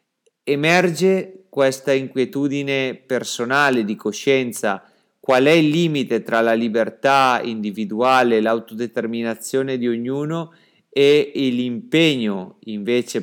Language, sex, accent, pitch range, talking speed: Italian, male, native, 115-155 Hz, 90 wpm